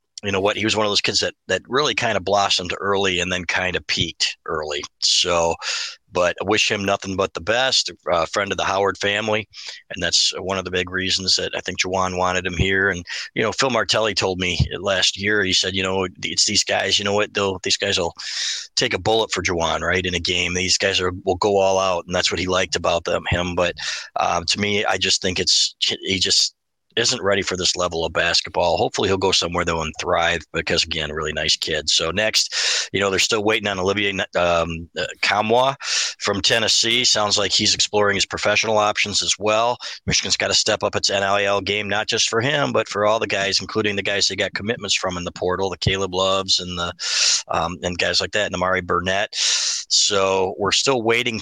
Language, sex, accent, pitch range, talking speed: English, male, American, 90-100 Hz, 230 wpm